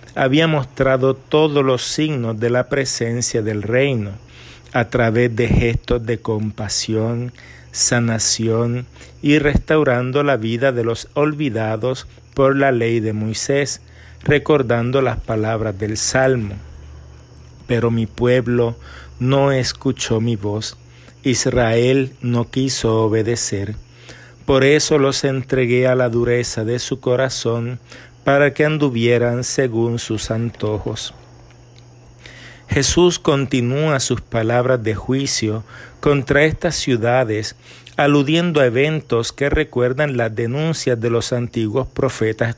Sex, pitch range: male, 115-135 Hz